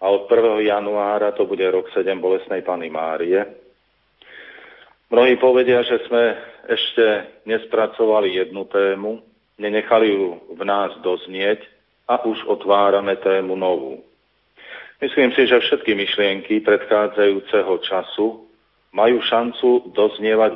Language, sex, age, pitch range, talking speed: Slovak, male, 40-59, 100-115 Hz, 115 wpm